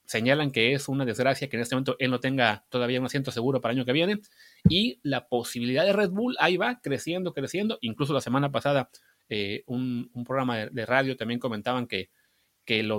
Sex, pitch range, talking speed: male, 125-160 Hz, 215 wpm